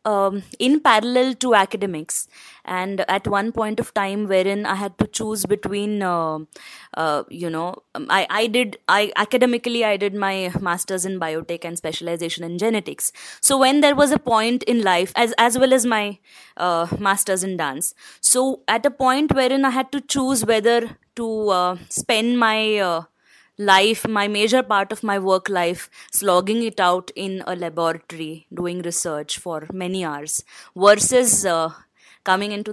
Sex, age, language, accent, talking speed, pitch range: female, 20-39, English, Indian, 165 wpm, 170-220 Hz